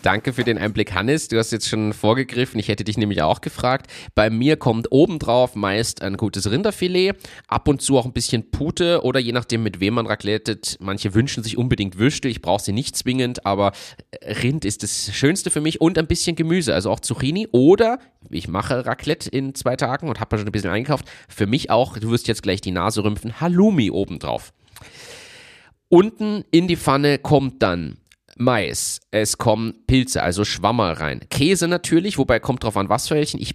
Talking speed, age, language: 195 wpm, 30-49, German